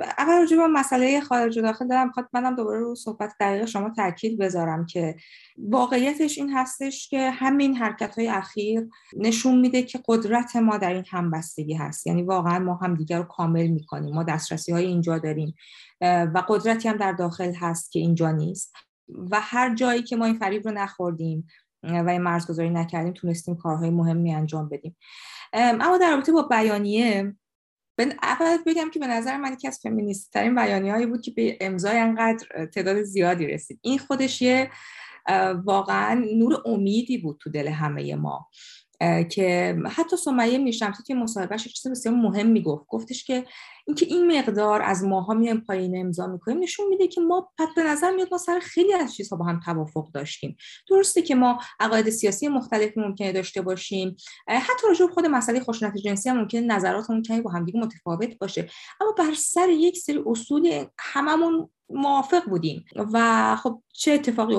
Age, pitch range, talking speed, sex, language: 20-39, 180-255 Hz, 170 wpm, female, Persian